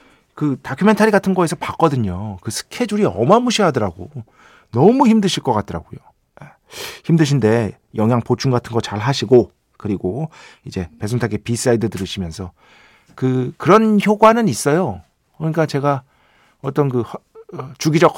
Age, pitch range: 40-59, 110-170 Hz